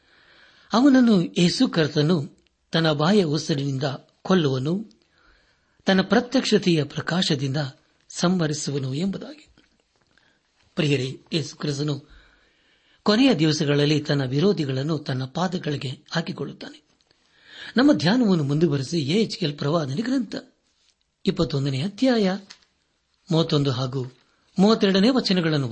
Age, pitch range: 60-79, 145-190 Hz